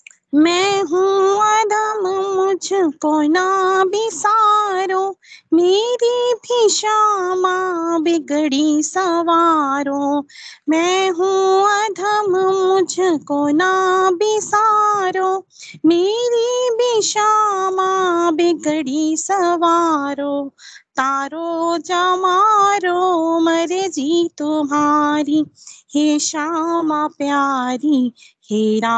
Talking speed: 60 wpm